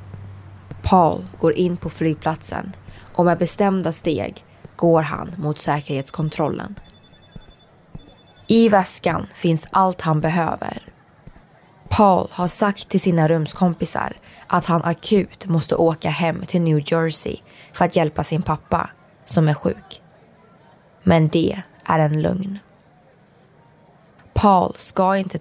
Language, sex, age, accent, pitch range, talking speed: Swedish, female, 20-39, native, 155-180 Hz, 120 wpm